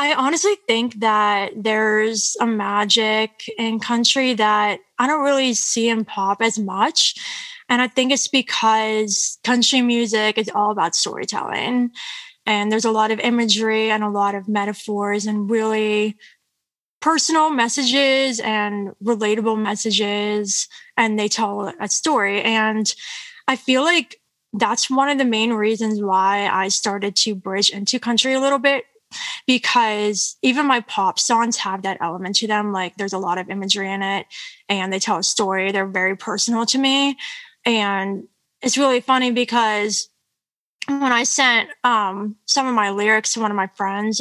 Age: 20-39